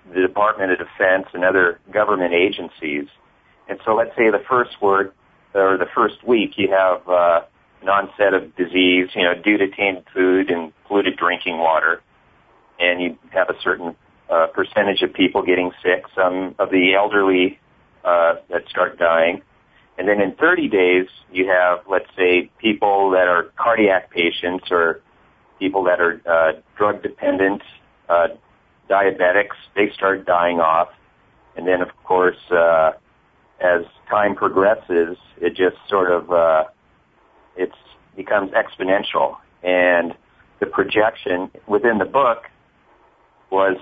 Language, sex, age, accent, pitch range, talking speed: English, male, 40-59, American, 90-100 Hz, 145 wpm